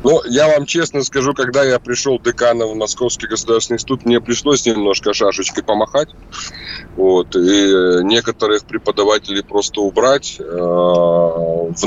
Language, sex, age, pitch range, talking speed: Russian, male, 20-39, 90-140 Hz, 125 wpm